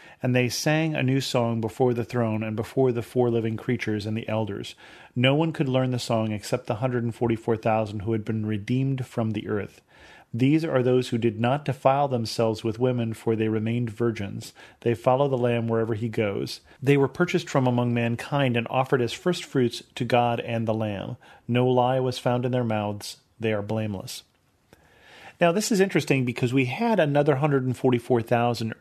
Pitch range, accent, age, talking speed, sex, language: 110-130 Hz, American, 40-59, 185 wpm, male, English